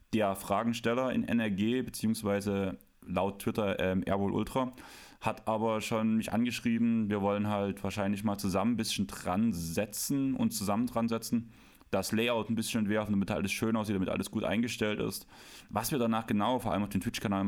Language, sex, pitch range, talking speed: German, male, 95-115 Hz, 180 wpm